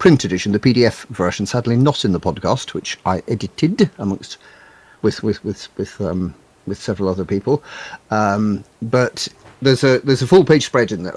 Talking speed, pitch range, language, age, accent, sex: 185 wpm, 105-150 Hz, English, 50-69, British, male